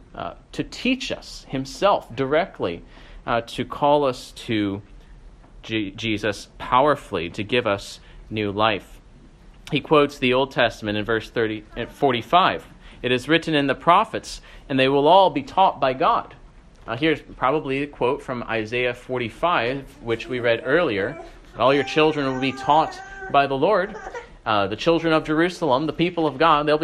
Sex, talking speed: male, 160 wpm